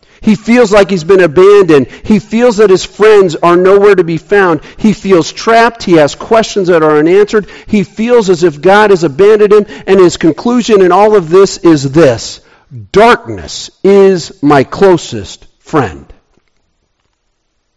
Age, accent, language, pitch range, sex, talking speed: 50-69, American, English, 135-200 Hz, male, 160 wpm